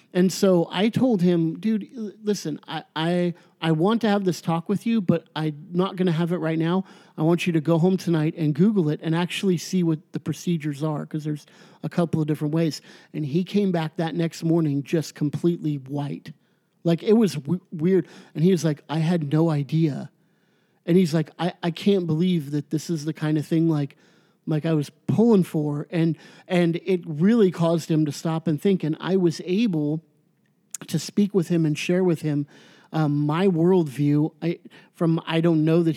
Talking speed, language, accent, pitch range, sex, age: 205 wpm, English, American, 155-185 Hz, male, 40-59